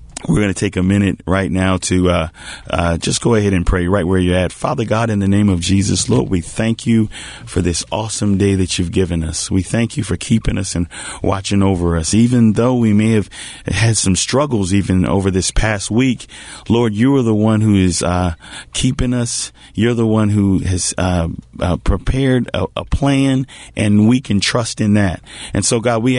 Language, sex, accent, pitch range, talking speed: English, male, American, 95-120 Hz, 215 wpm